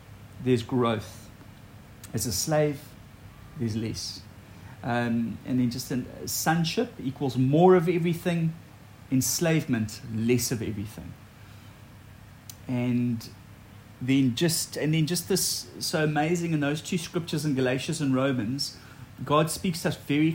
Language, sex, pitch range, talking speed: English, male, 115-150 Hz, 125 wpm